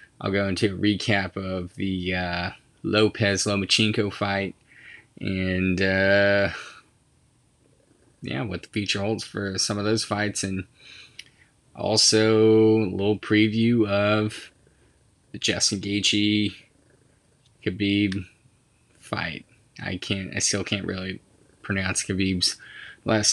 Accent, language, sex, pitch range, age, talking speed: American, English, male, 95-110 Hz, 20-39, 110 wpm